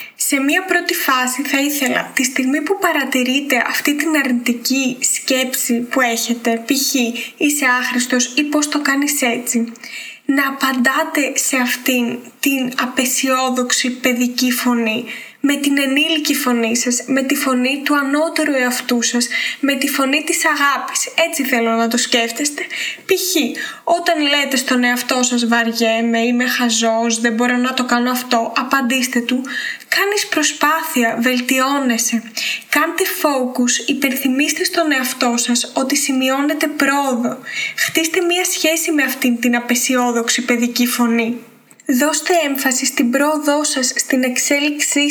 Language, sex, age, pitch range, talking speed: Greek, female, 20-39, 245-295 Hz, 130 wpm